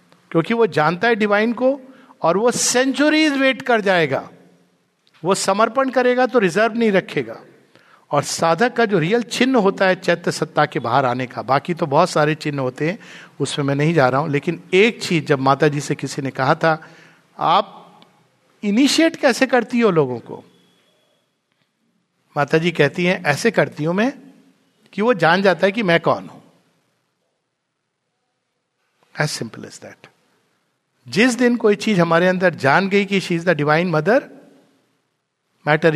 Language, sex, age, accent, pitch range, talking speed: Hindi, male, 50-69, native, 145-210 Hz, 165 wpm